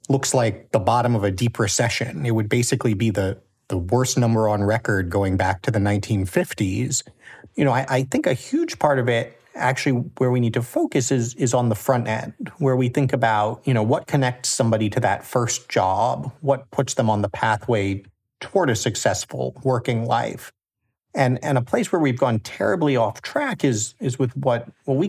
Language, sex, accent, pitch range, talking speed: English, male, American, 110-130 Hz, 205 wpm